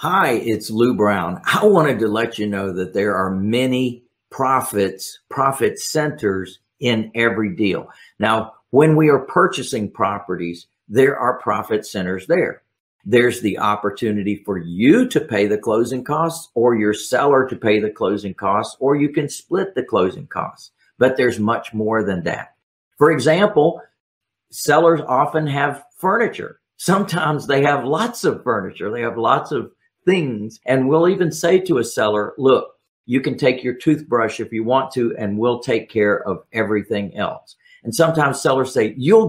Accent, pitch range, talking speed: American, 110-160 Hz, 165 wpm